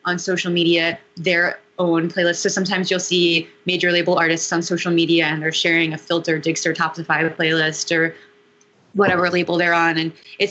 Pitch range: 160-180 Hz